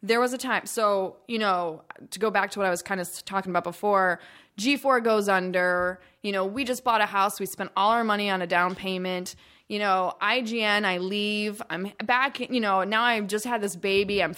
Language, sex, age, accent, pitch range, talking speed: English, female, 20-39, American, 185-235 Hz, 225 wpm